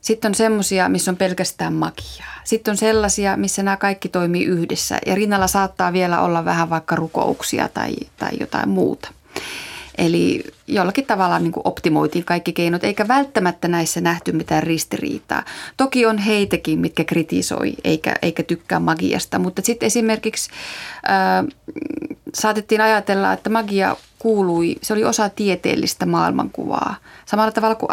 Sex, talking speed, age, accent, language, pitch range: female, 145 wpm, 30-49, native, Finnish, 165-220 Hz